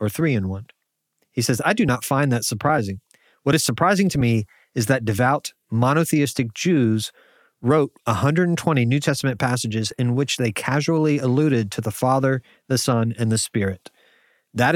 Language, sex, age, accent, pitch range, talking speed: English, male, 30-49, American, 115-145 Hz, 165 wpm